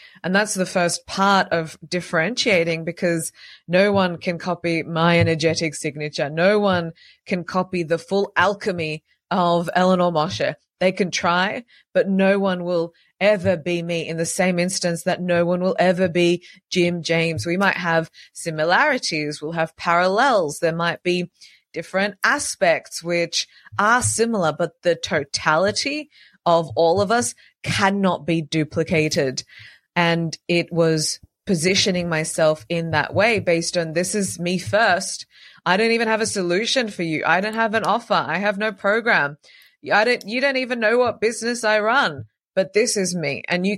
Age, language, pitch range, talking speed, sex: 20-39, English, 165-200 Hz, 165 wpm, female